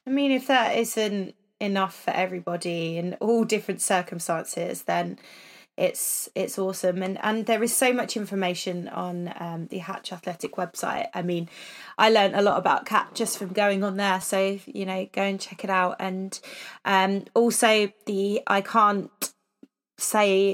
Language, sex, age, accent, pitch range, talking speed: English, female, 20-39, British, 195-225 Hz, 165 wpm